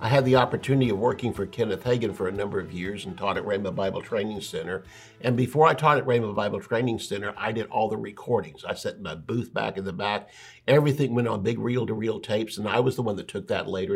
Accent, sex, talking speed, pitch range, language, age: American, male, 255 wpm, 110-130 Hz, English, 60-79